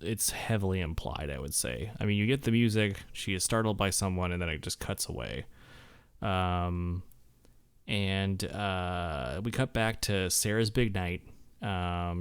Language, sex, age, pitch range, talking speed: English, male, 20-39, 90-115 Hz, 165 wpm